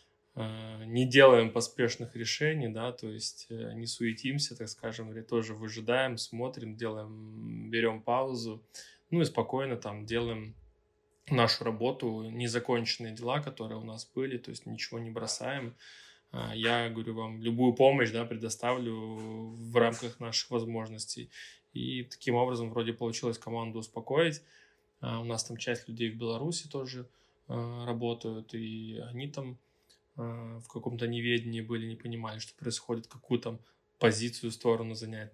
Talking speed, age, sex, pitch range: 135 wpm, 20-39, male, 115-125 Hz